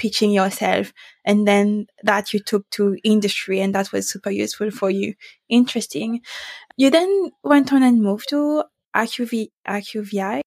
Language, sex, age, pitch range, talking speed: English, female, 20-39, 205-240 Hz, 150 wpm